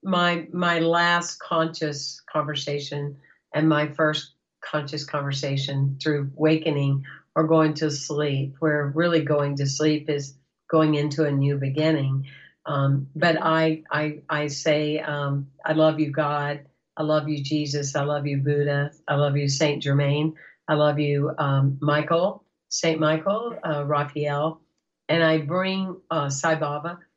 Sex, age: female, 50-69